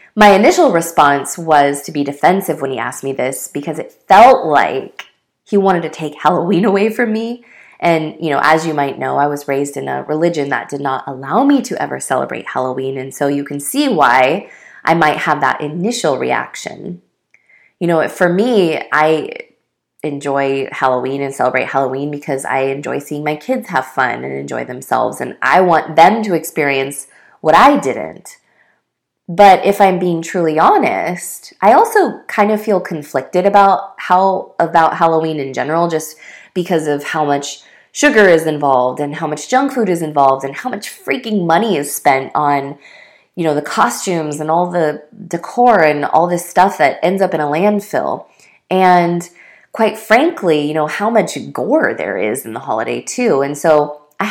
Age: 20-39